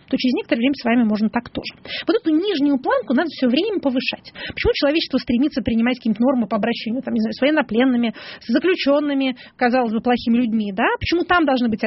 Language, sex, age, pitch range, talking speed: Russian, female, 30-49, 230-280 Hz, 205 wpm